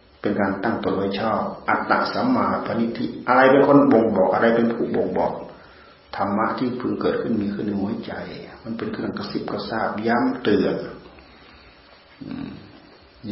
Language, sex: Thai, male